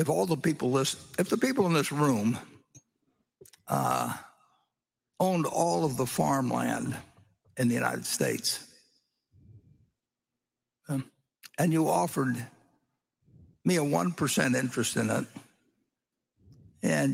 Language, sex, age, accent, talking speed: English, male, 60-79, American, 115 wpm